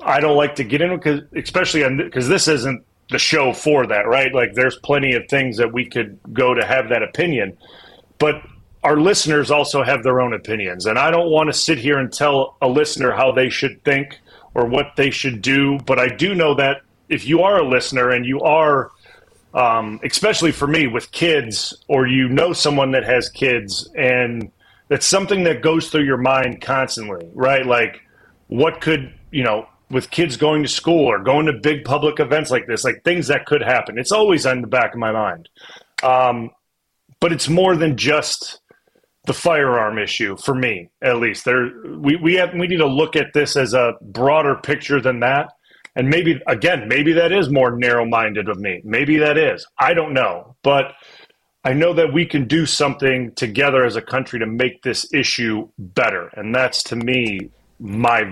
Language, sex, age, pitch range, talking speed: English, male, 30-49, 125-150 Hz, 195 wpm